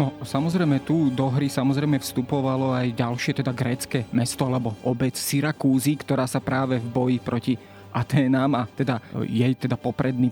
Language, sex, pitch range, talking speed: Slovak, male, 130-155 Hz, 155 wpm